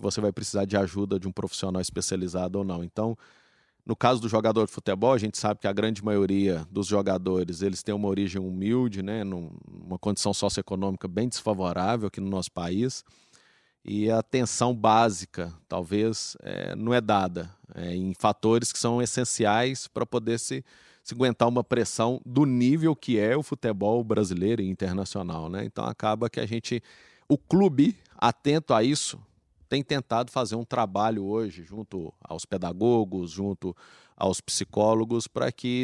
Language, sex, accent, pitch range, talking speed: Portuguese, male, Brazilian, 95-120 Hz, 165 wpm